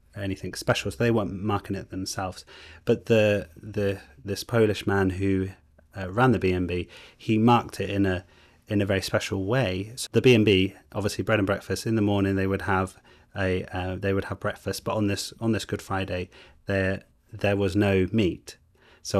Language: English